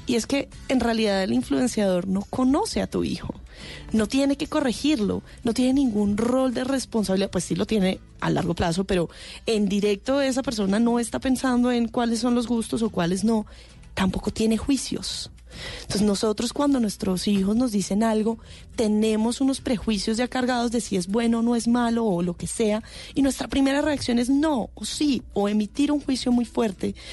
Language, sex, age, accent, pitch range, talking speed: Spanish, female, 20-39, Colombian, 205-260 Hz, 190 wpm